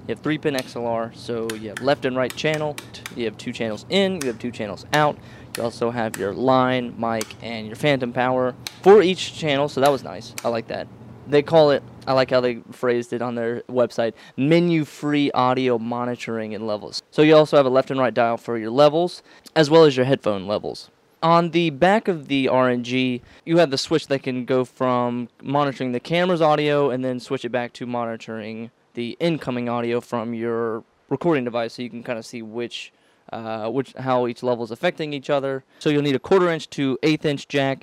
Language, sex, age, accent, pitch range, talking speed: English, male, 20-39, American, 120-145 Hz, 215 wpm